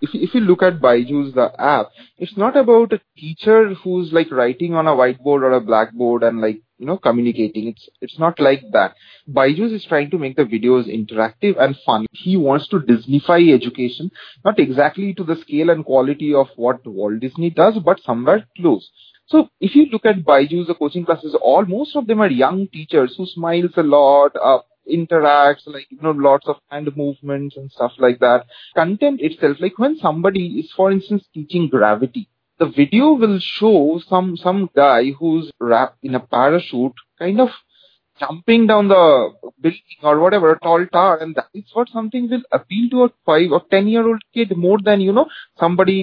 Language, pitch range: English, 135-195 Hz